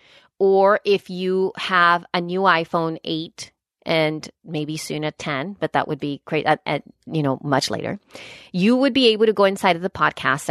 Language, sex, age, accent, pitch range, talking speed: English, female, 30-49, American, 180-275 Hz, 195 wpm